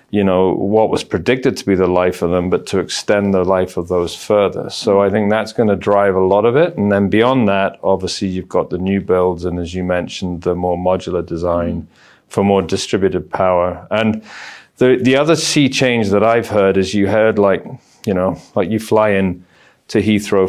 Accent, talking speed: British, 210 wpm